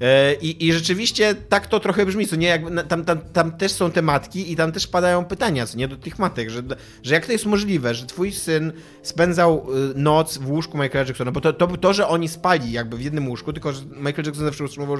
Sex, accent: male, native